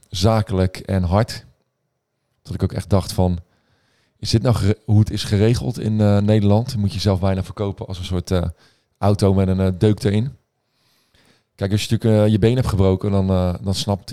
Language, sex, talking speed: Dutch, male, 205 wpm